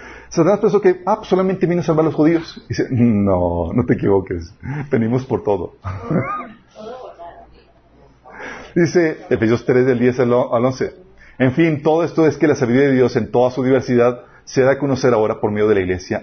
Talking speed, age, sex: 190 wpm, 40-59, male